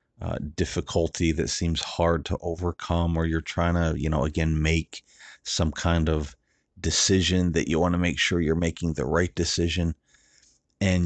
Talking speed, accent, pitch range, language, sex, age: 170 wpm, American, 80-110 Hz, English, male, 40-59